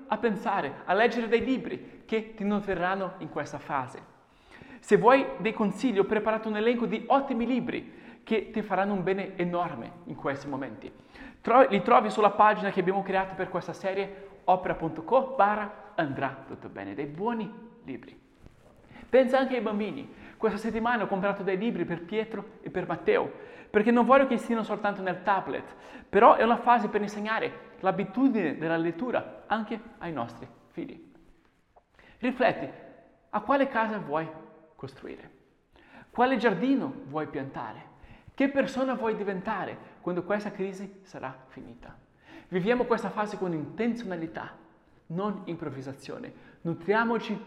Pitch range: 180-235 Hz